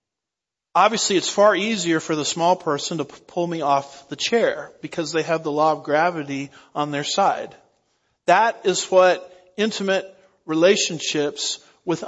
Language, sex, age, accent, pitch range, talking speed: English, male, 40-59, American, 150-190 Hz, 150 wpm